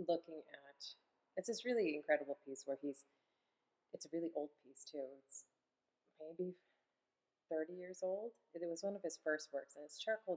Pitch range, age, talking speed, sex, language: 145-160 Hz, 30-49, 175 wpm, female, English